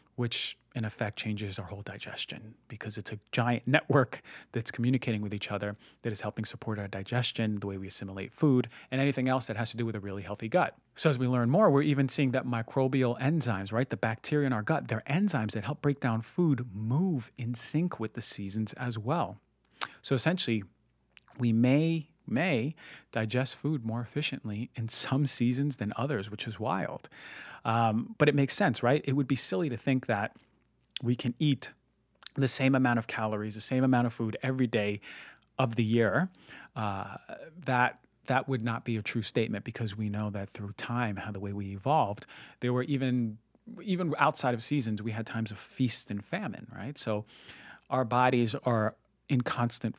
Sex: male